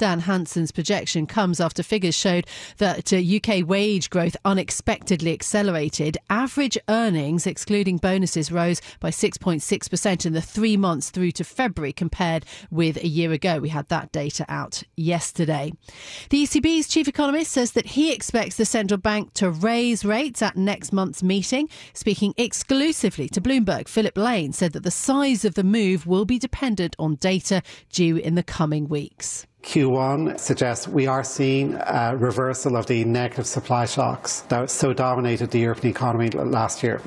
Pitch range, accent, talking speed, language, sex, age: 140-200 Hz, British, 160 wpm, English, female, 40-59